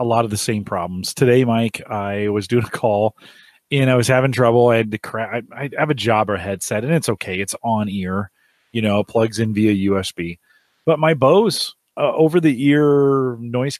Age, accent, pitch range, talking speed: 30-49, American, 100-130 Hz, 200 wpm